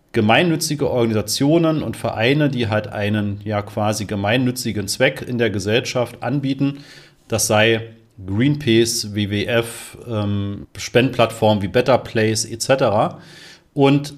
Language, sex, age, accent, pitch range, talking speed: German, male, 30-49, German, 105-135 Hz, 105 wpm